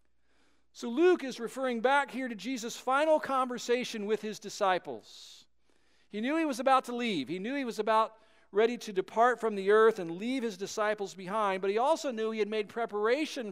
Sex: male